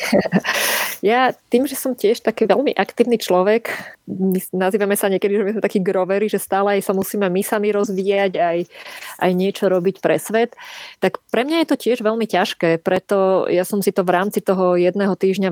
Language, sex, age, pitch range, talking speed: Slovak, female, 20-39, 180-210 Hz, 185 wpm